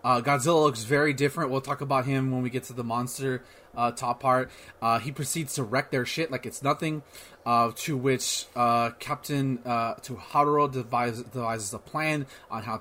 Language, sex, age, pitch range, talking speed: English, male, 30-49, 125-150 Hz, 190 wpm